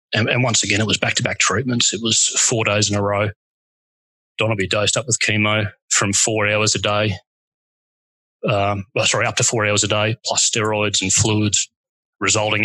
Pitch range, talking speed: 105-125 Hz, 190 wpm